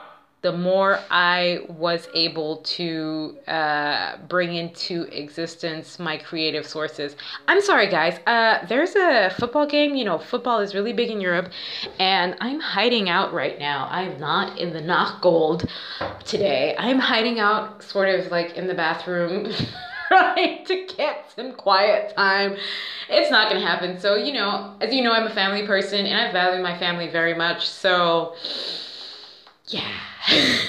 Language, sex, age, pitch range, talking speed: English, female, 20-39, 170-220 Hz, 155 wpm